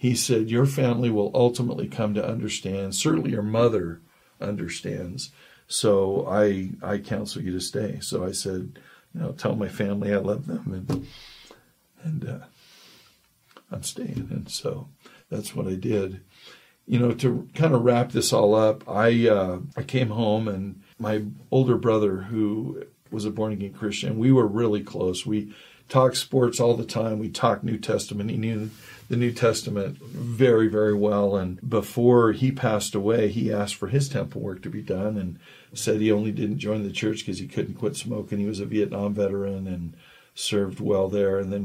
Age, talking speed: 50-69, 180 wpm